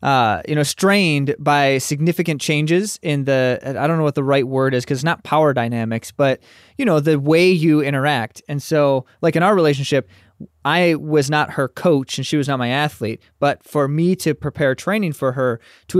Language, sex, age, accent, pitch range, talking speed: English, male, 20-39, American, 130-160 Hz, 205 wpm